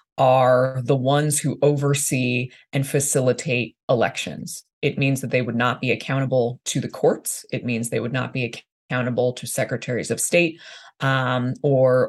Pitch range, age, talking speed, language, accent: 125-155 Hz, 20-39, 160 wpm, English, American